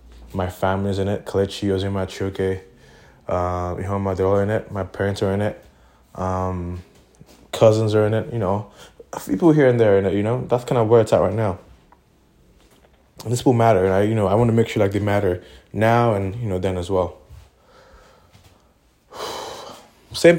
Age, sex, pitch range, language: 20-39, male, 100-120 Hz, English